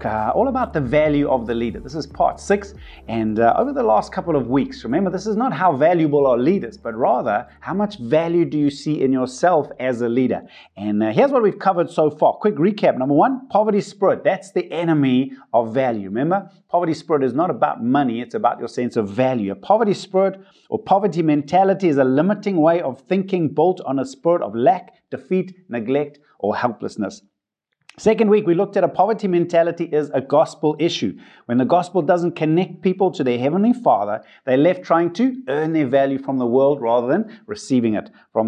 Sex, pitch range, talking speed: male, 135-190 Hz, 205 wpm